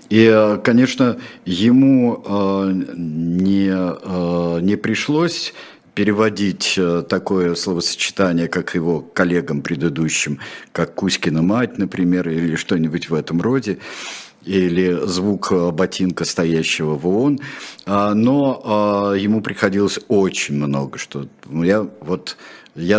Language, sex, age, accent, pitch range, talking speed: Russian, male, 50-69, native, 85-110 Hz, 95 wpm